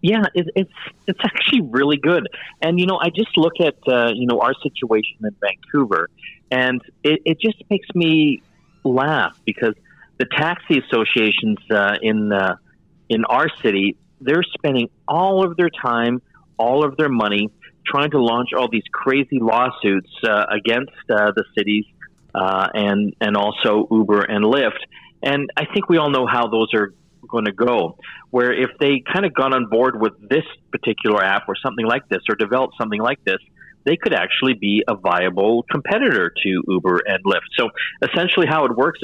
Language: English